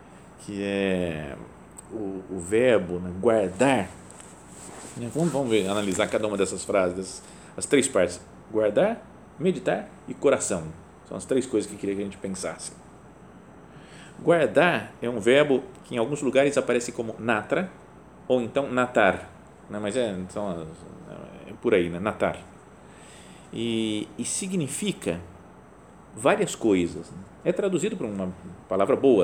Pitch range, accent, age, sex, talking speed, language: 95-125 Hz, Brazilian, 40-59, male, 135 wpm, Portuguese